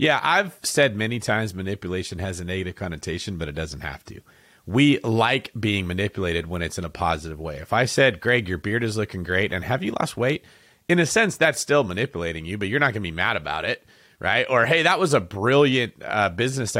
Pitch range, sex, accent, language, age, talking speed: 95-140 Hz, male, American, English, 30-49, 230 wpm